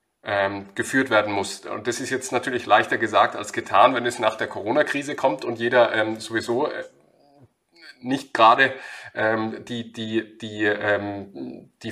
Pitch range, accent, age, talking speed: 110-125 Hz, German, 30-49, 135 wpm